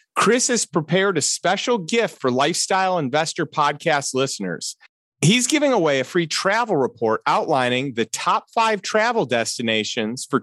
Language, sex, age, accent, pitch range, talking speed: English, male, 30-49, American, 145-200 Hz, 145 wpm